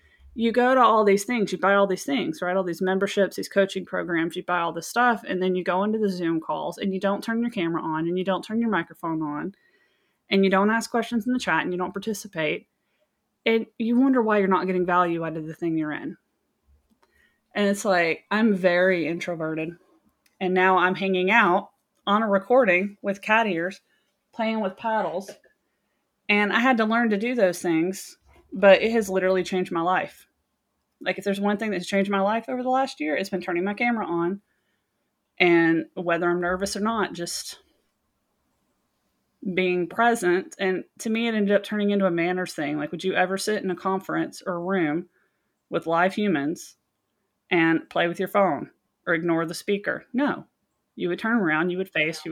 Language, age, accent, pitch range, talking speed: English, 20-39, American, 175-215 Hz, 205 wpm